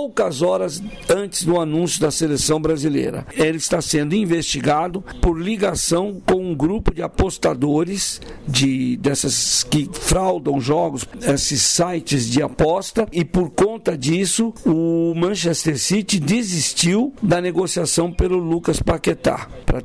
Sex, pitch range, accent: male, 150-195 Hz, Brazilian